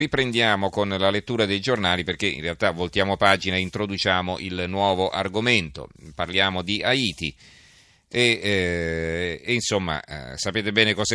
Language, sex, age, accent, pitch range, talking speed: Italian, male, 40-59, native, 85-105 Hz, 145 wpm